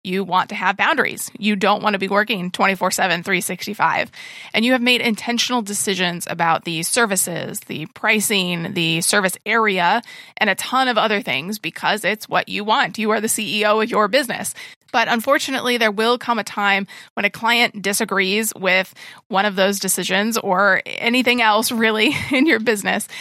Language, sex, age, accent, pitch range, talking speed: English, female, 30-49, American, 195-230 Hz, 175 wpm